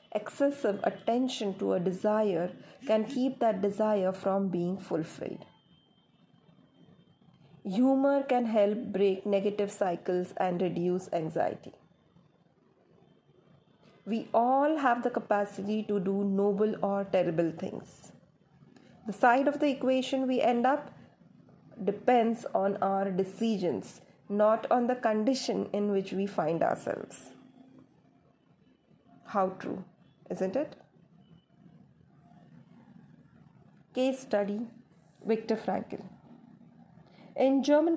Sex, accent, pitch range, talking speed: female, native, 195-245 Hz, 100 wpm